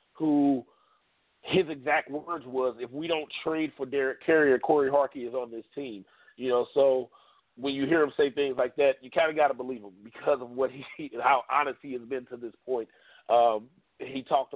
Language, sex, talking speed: English, male, 205 wpm